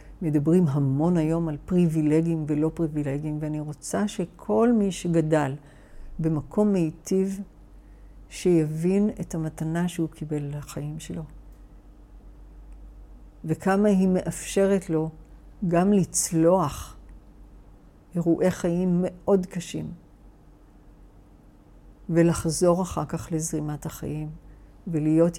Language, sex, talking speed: Hebrew, female, 85 wpm